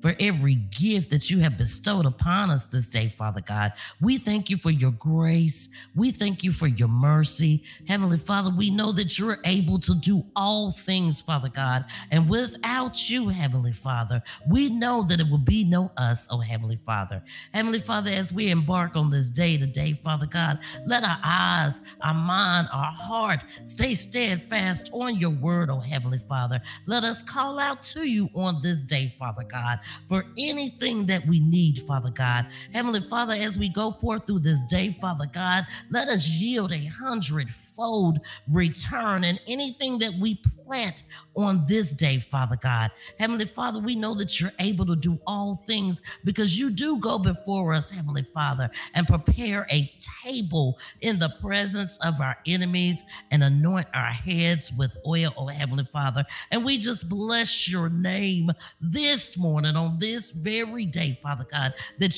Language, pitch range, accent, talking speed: English, 145-210 Hz, American, 170 wpm